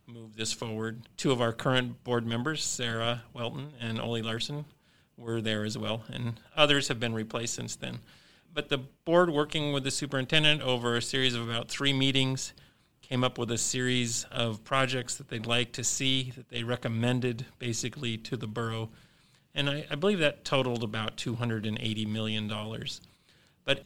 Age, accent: 40-59, American